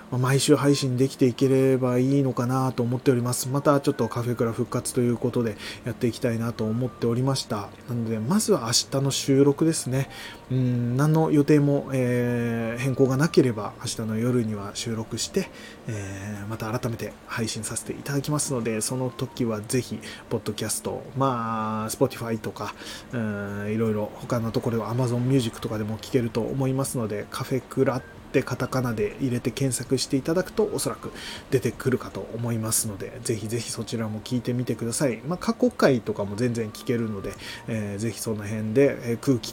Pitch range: 110-135 Hz